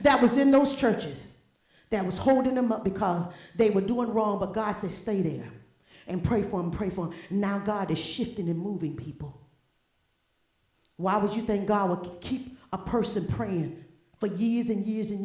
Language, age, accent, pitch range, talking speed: English, 40-59, American, 180-240 Hz, 195 wpm